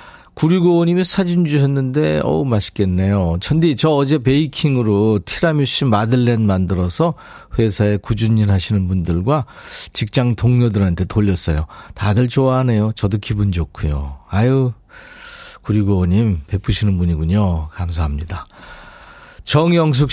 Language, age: Korean, 40-59